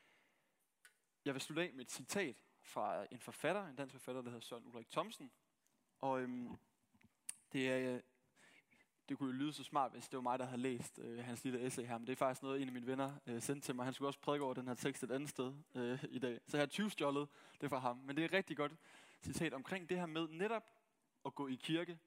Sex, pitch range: male, 125-155 Hz